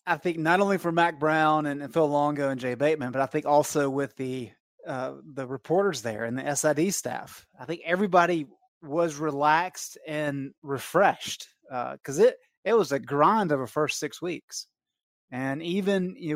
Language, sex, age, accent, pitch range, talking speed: English, male, 30-49, American, 140-165 Hz, 180 wpm